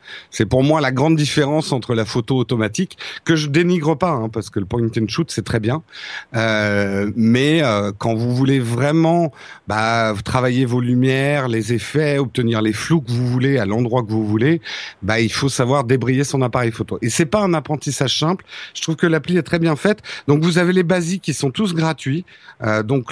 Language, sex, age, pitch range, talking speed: French, male, 50-69, 120-165 Hz, 215 wpm